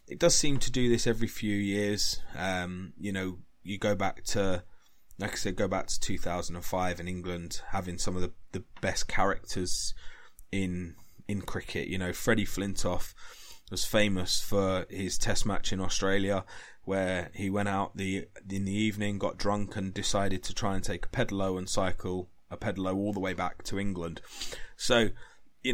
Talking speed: 180 wpm